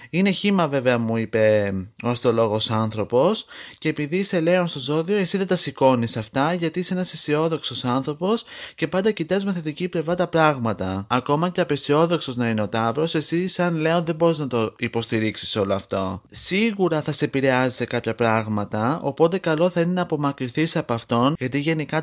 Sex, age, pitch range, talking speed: male, 30-49, 115-165 Hz, 185 wpm